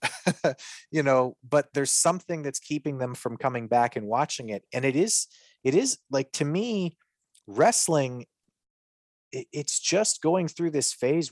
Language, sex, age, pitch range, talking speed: English, male, 30-49, 120-165 Hz, 160 wpm